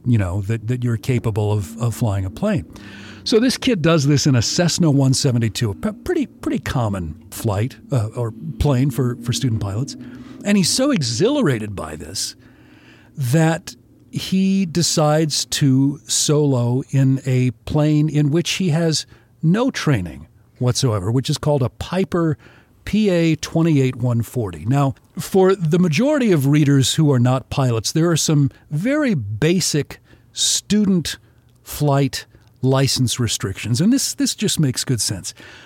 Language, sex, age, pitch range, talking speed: English, male, 50-69, 120-160 Hz, 145 wpm